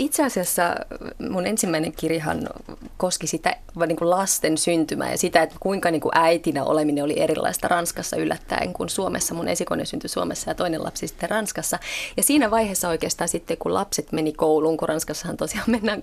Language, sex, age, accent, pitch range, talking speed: Finnish, female, 30-49, native, 165-225 Hz, 175 wpm